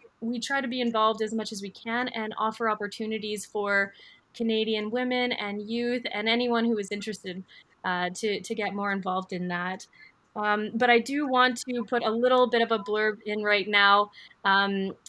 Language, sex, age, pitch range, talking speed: English, female, 20-39, 210-240 Hz, 190 wpm